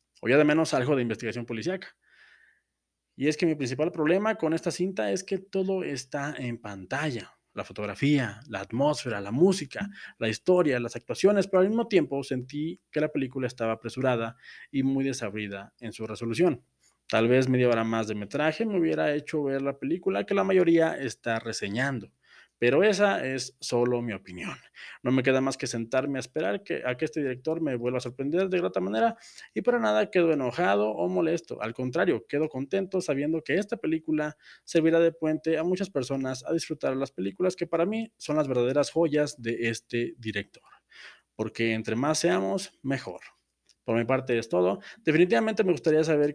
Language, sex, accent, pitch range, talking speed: Spanish, male, Mexican, 120-165 Hz, 185 wpm